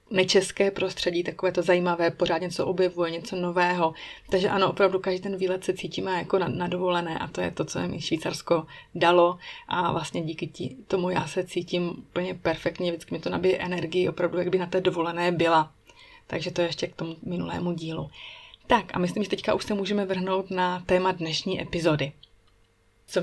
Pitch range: 170-190 Hz